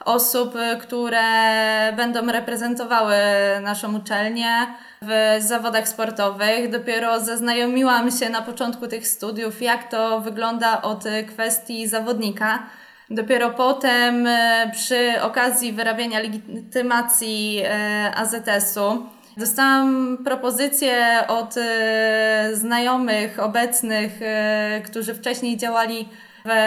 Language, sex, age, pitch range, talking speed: Polish, female, 20-39, 220-245 Hz, 85 wpm